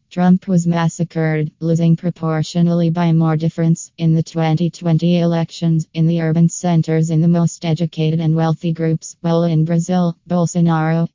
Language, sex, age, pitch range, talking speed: English, female, 20-39, 160-170 Hz, 145 wpm